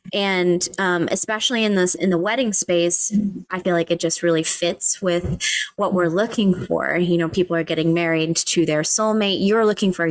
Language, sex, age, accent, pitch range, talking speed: English, female, 20-39, American, 170-205 Hz, 195 wpm